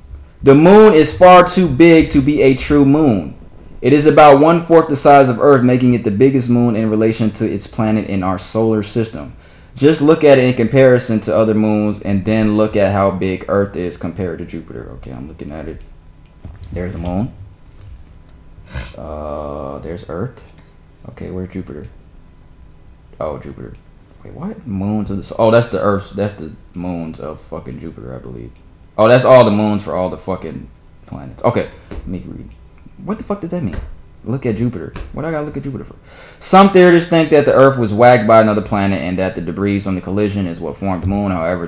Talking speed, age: 205 wpm, 20-39